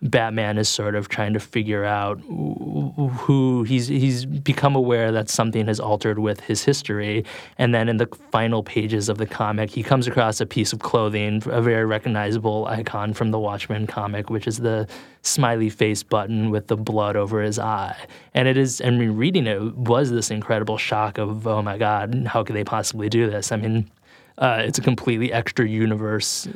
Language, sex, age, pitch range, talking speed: English, male, 20-39, 105-115 Hz, 190 wpm